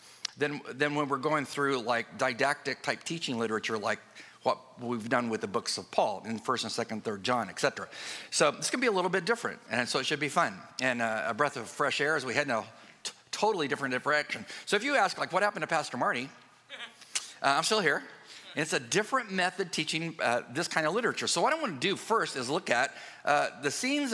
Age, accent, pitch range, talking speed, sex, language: 50-69, American, 130-180 Hz, 235 wpm, male, English